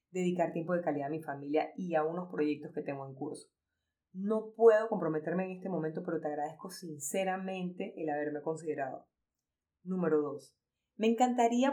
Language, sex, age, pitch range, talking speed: Spanish, female, 20-39, 155-200 Hz, 165 wpm